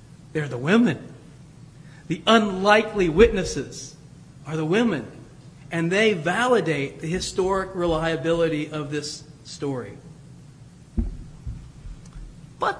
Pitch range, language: 150-220 Hz, English